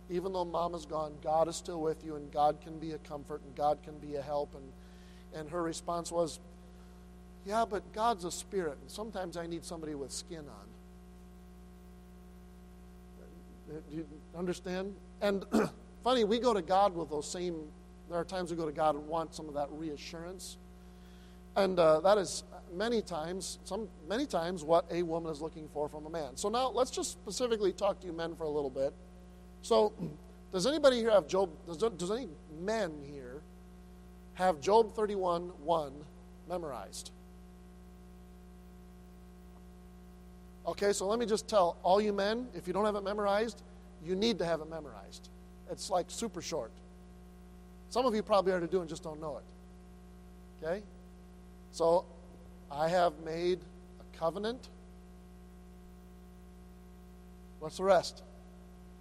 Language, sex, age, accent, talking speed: English, male, 50-69, American, 160 wpm